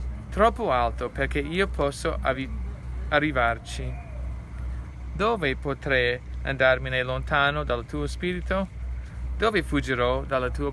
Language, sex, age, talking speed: Italian, male, 20-39, 100 wpm